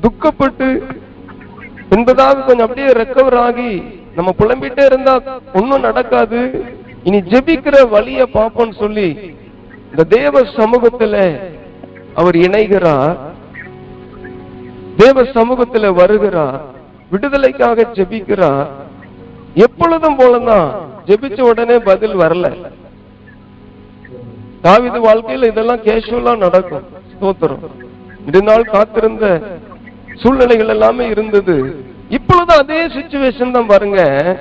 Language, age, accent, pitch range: Tamil, 50-69, native, 185-255 Hz